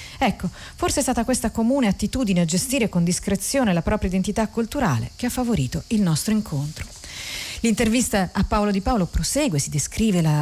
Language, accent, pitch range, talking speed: Italian, native, 165-220 Hz, 175 wpm